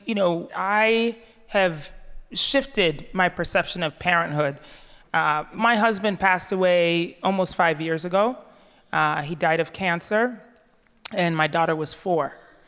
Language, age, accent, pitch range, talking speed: English, 30-49, American, 160-195 Hz, 130 wpm